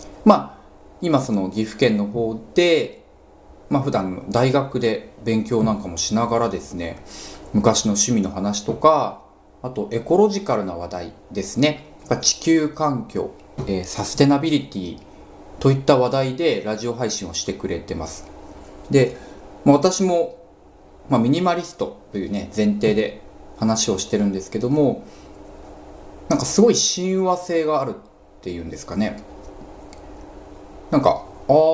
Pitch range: 100-145 Hz